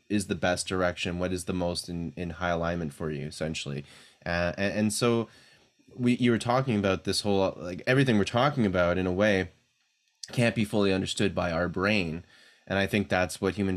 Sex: male